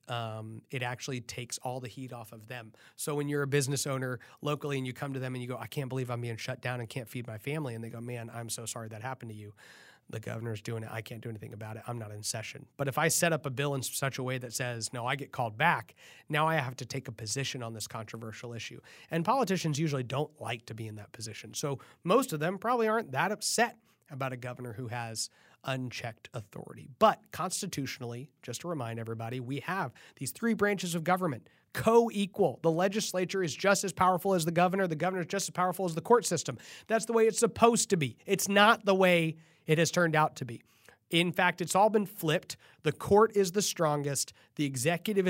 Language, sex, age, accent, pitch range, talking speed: English, male, 30-49, American, 125-175 Hz, 235 wpm